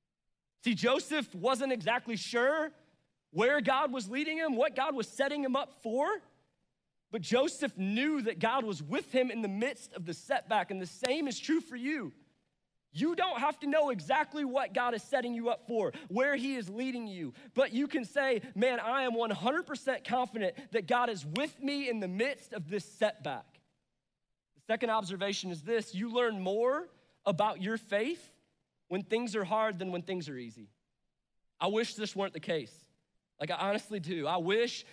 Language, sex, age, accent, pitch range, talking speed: English, male, 20-39, American, 200-255 Hz, 185 wpm